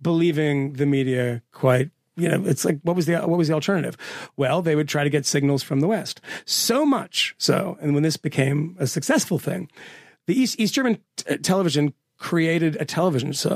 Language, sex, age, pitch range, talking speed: English, male, 30-49, 150-180 Hz, 200 wpm